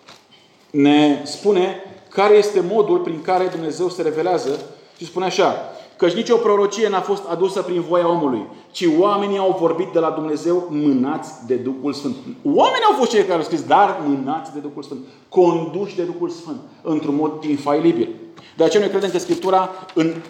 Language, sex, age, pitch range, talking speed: Romanian, male, 30-49, 150-190 Hz, 175 wpm